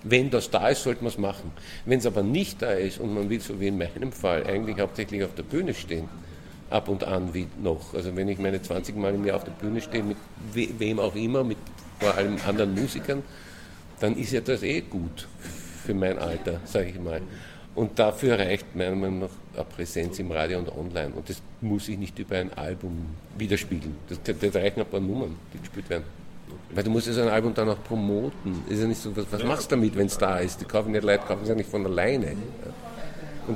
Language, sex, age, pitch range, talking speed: German, male, 50-69, 95-125 Hz, 230 wpm